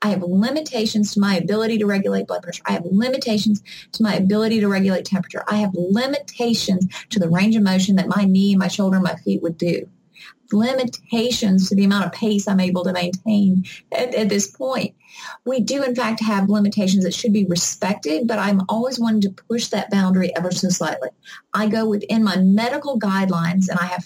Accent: American